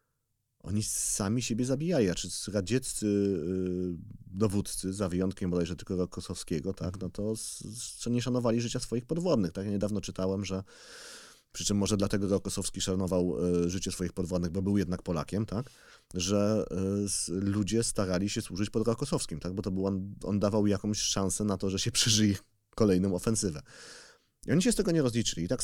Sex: male